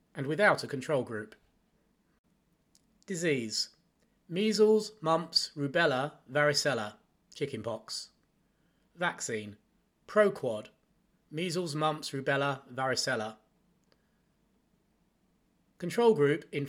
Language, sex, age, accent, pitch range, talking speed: English, male, 30-49, British, 140-190 Hz, 70 wpm